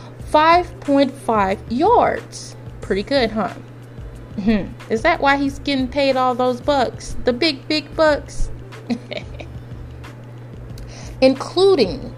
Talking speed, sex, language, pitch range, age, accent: 100 wpm, female, English, 195-320 Hz, 30-49, American